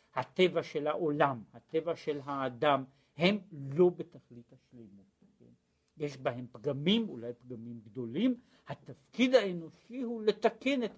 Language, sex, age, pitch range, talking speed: Hebrew, male, 60-79, 130-215 Hz, 115 wpm